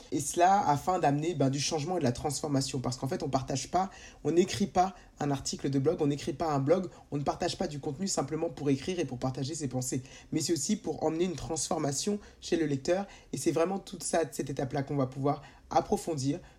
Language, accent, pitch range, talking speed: French, French, 140-170 Hz, 225 wpm